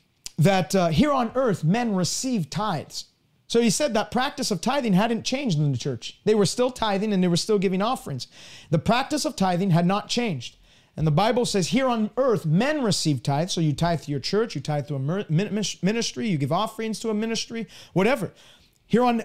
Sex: male